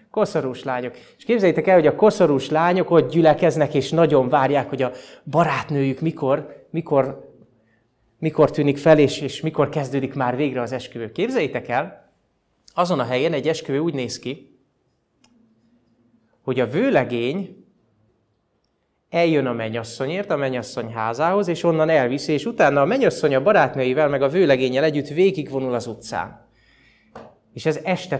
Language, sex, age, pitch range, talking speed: Hungarian, male, 30-49, 125-175 Hz, 145 wpm